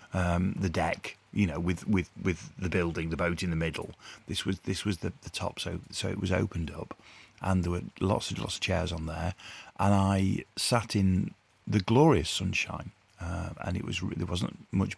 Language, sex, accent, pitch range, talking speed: English, male, British, 90-110 Hz, 210 wpm